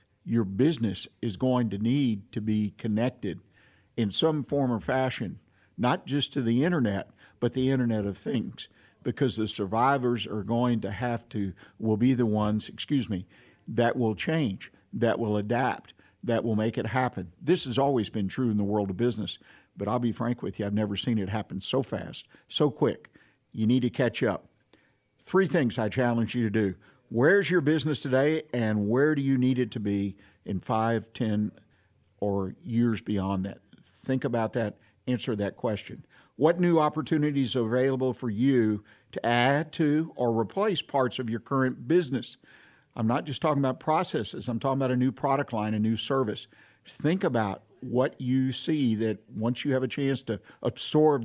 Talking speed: 185 wpm